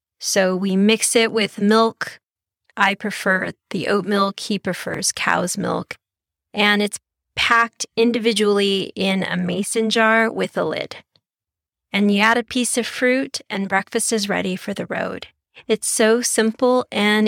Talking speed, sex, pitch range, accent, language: 155 wpm, female, 190-220 Hz, American, English